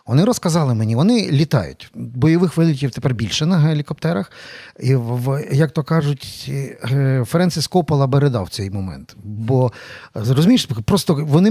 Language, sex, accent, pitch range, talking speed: Ukrainian, male, native, 130-170 Hz, 135 wpm